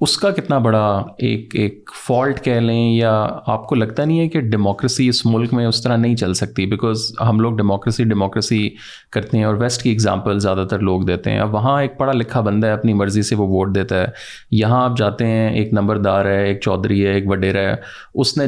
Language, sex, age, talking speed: Urdu, male, 30-49, 225 wpm